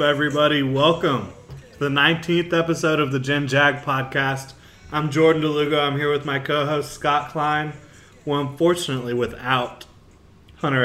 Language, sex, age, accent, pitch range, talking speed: English, male, 20-39, American, 110-140 Hz, 145 wpm